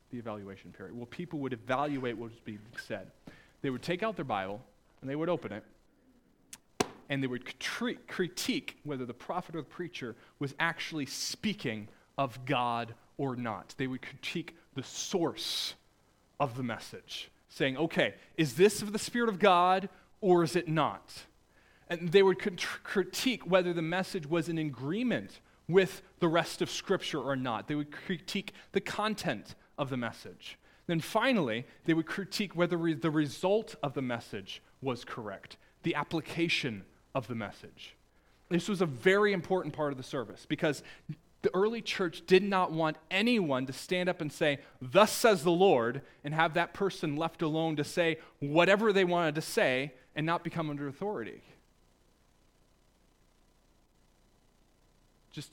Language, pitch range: English, 135-185 Hz